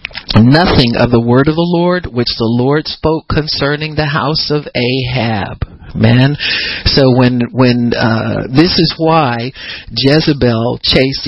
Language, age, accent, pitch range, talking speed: English, 50-69, American, 115-145 Hz, 140 wpm